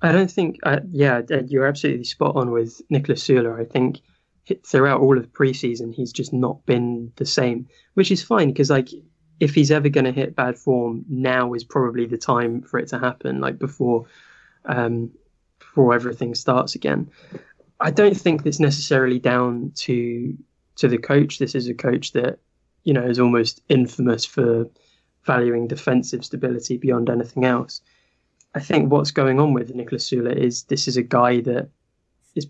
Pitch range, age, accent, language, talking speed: 120-140 Hz, 20-39, British, English, 175 wpm